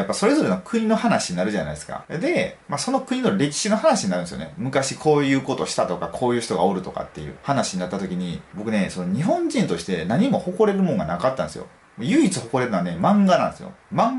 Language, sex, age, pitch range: Japanese, male, 30-49, 125-205 Hz